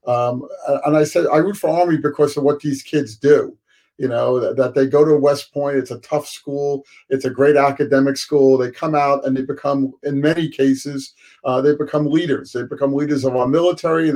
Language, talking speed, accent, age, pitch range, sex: English, 220 wpm, American, 50-69, 130-150 Hz, male